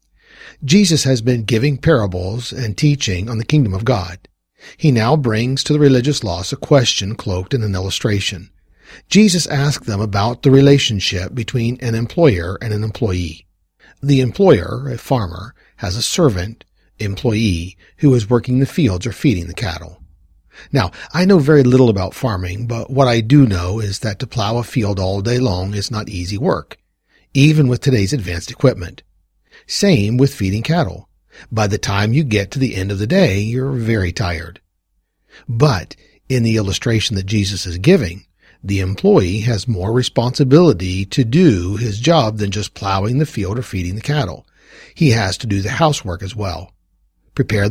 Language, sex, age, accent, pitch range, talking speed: English, male, 50-69, American, 95-135 Hz, 170 wpm